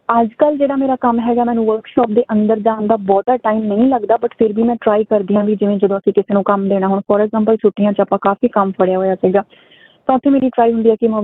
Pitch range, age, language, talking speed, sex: 205-235 Hz, 20-39, Punjabi, 260 wpm, female